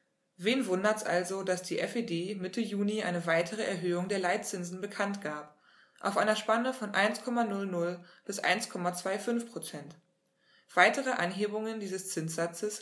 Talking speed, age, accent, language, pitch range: 125 wpm, 20-39, German, German, 175-210 Hz